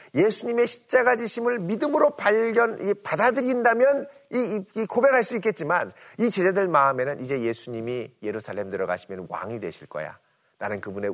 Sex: male